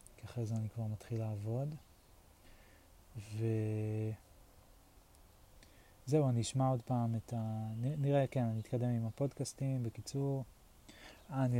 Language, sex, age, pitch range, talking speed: Hebrew, male, 20-39, 115-145 Hz, 105 wpm